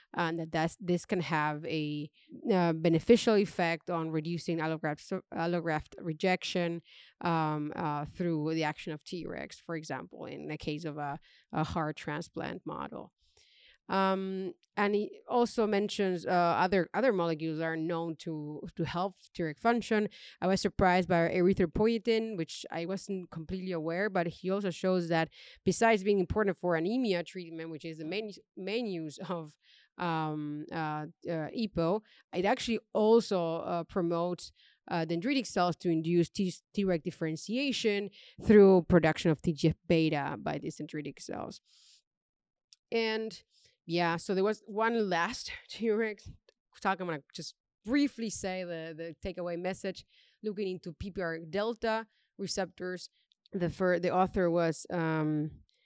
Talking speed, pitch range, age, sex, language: 145 wpm, 165-200 Hz, 30-49, female, English